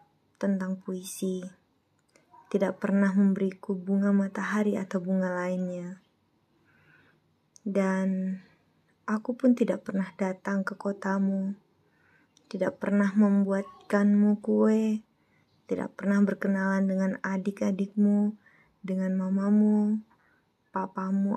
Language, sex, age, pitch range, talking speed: Indonesian, female, 20-39, 190-205 Hz, 85 wpm